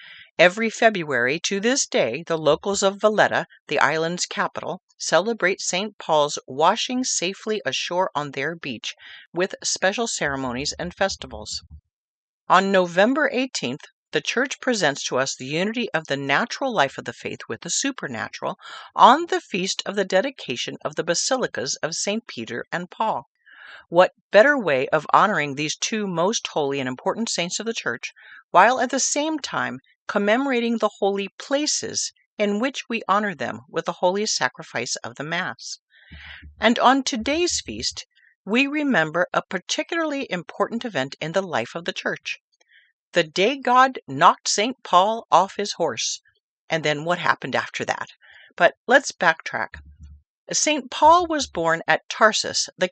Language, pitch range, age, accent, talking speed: English, 160-235 Hz, 40-59, American, 155 wpm